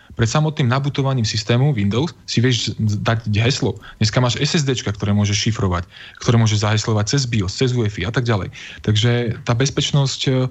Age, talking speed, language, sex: 20-39, 160 wpm, Slovak, male